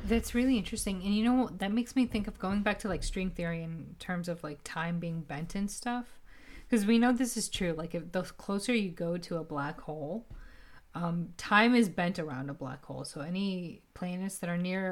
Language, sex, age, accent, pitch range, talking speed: English, female, 30-49, American, 170-210 Hz, 220 wpm